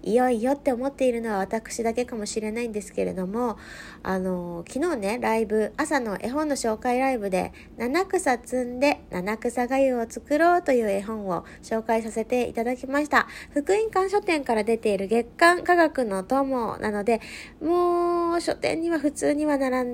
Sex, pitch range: female, 190-275 Hz